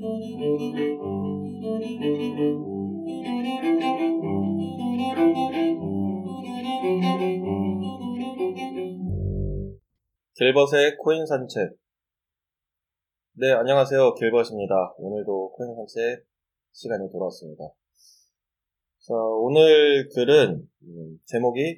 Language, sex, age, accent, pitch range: English, male, 20-39, Korean, 95-155 Hz